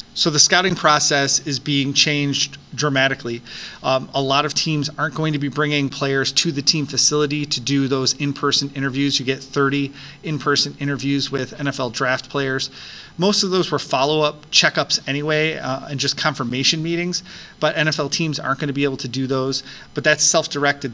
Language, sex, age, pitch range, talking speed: English, male, 30-49, 135-150 Hz, 180 wpm